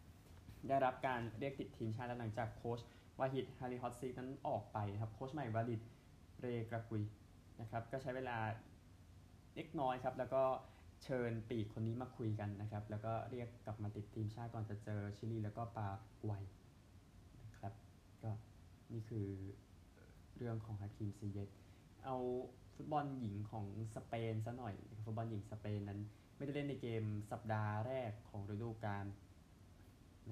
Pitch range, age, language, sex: 100-115 Hz, 20-39, Thai, male